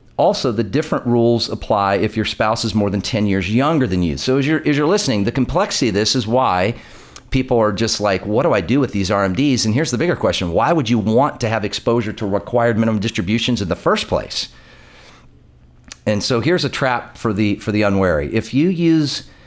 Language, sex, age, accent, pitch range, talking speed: English, male, 40-59, American, 105-130 Hz, 220 wpm